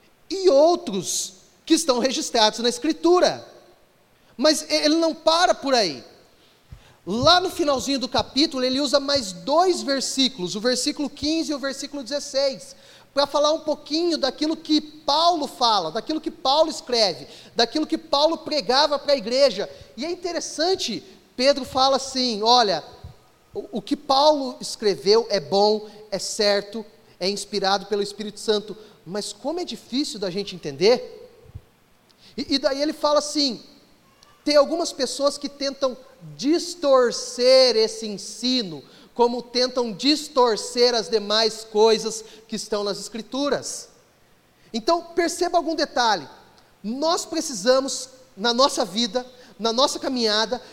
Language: Portuguese